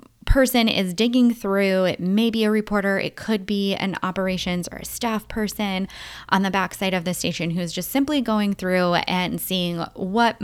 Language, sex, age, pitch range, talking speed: English, female, 20-39, 180-230 Hz, 190 wpm